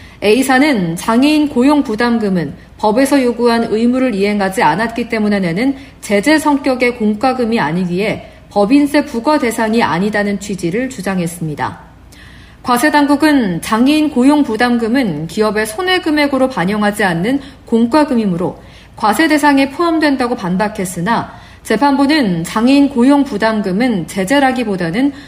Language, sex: Korean, female